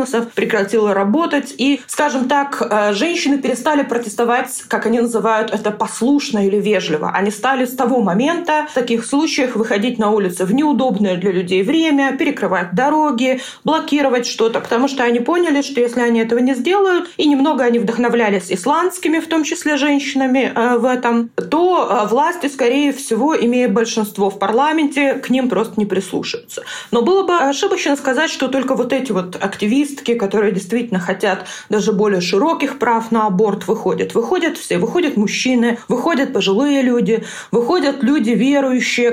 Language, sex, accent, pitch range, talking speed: Russian, female, native, 215-280 Hz, 155 wpm